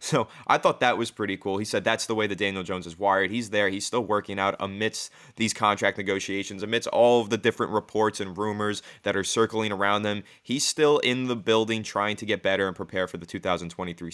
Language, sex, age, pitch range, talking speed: English, male, 20-39, 105-130 Hz, 230 wpm